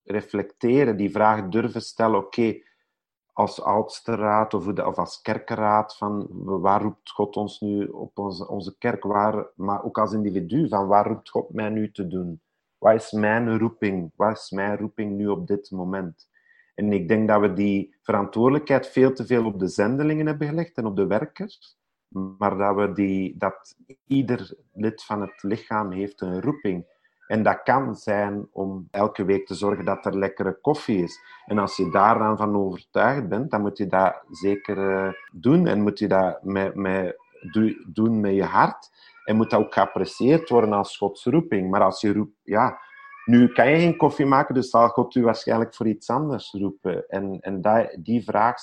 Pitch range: 100-115 Hz